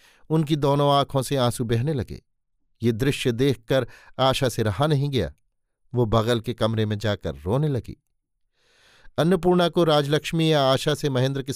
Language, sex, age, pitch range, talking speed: Hindi, male, 50-69, 115-140 Hz, 160 wpm